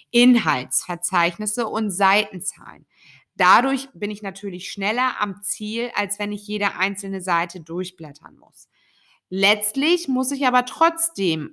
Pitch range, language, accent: 185-255 Hz, German, German